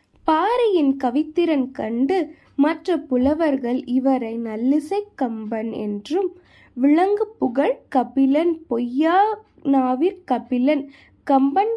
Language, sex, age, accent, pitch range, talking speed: Tamil, female, 20-39, native, 250-330 Hz, 75 wpm